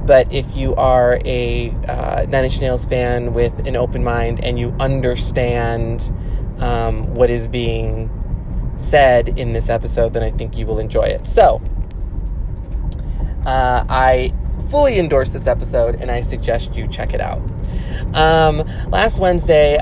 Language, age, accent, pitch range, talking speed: English, 20-39, American, 115-135 Hz, 150 wpm